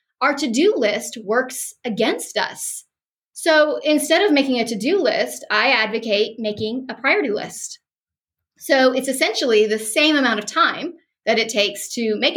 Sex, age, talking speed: female, 20-39, 155 wpm